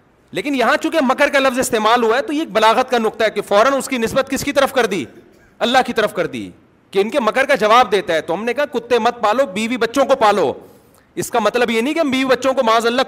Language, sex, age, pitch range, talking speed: Urdu, male, 40-59, 220-265 Hz, 280 wpm